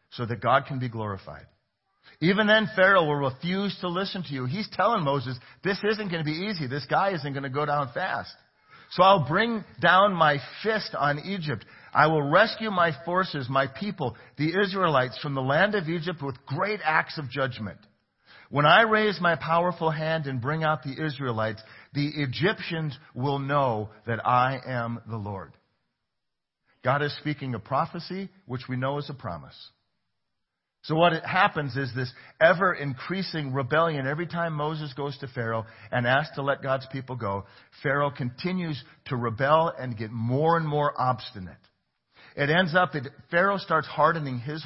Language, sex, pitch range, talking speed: English, male, 125-170 Hz, 170 wpm